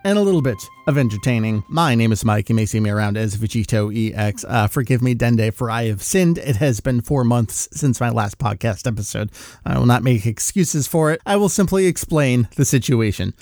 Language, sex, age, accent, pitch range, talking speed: English, male, 30-49, American, 125-180 Hz, 220 wpm